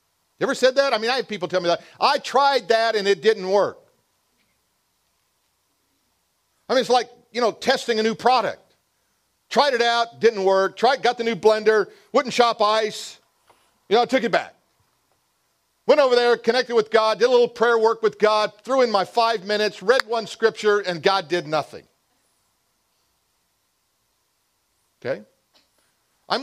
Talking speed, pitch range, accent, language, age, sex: 170 wpm, 185-240 Hz, American, English, 50-69, male